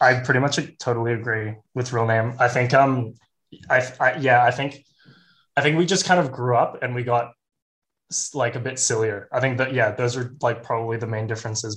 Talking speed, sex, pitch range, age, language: 215 wpm, male, 115-130 Hz, 10-29, English